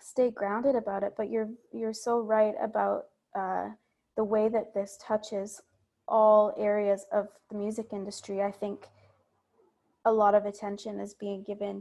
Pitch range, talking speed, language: 205-230 Hz, 160 wpm, English